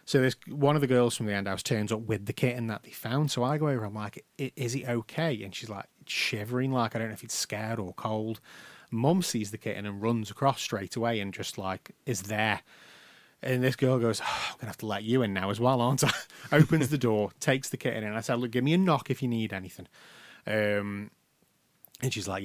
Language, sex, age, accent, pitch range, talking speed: English, male, 30-49, British, 105-150 Hz, 250 wpm